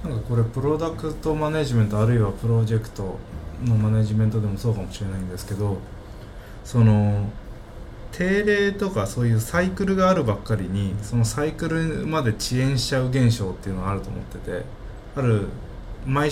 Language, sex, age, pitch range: Japanese, male, 20-39, 105-125 Hz